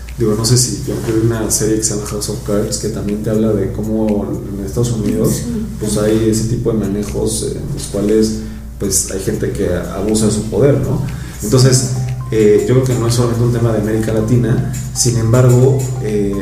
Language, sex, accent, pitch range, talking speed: Spanish, male, Mexican, 110-130 Hz, 215 wpm